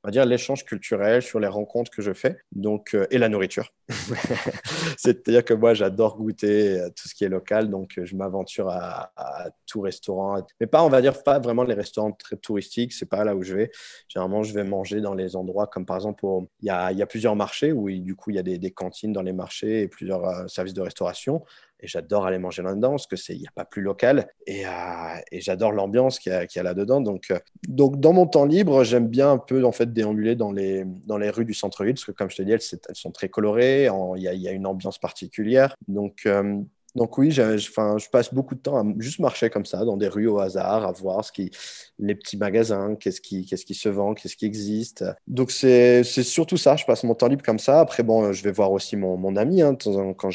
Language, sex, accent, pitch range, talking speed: French, male, French, 95-120 Hz, 250 wpm